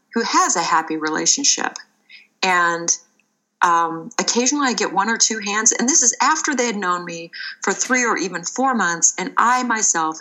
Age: 40-59